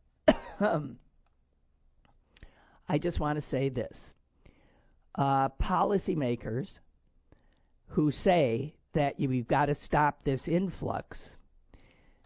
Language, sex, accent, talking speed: English, male, American, 90 wpm